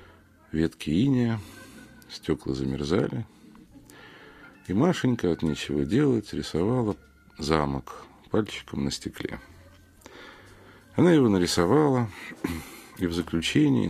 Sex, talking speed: male, 85 wpm